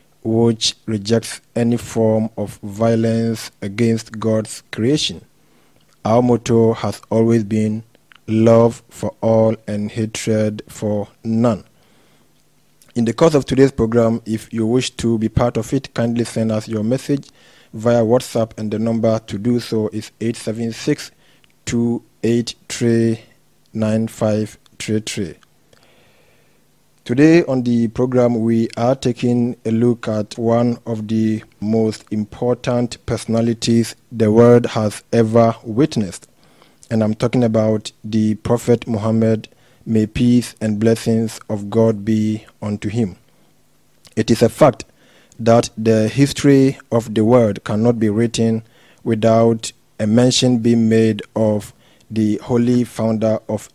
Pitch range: 110-120 Hz